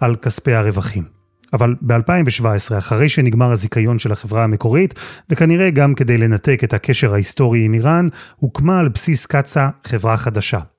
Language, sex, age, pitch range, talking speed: Hebrew, male, 30-49, 110-150 Hz, 145 wpm